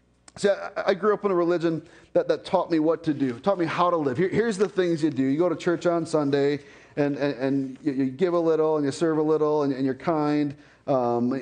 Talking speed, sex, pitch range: 240 wpm, male, 150-215 Hz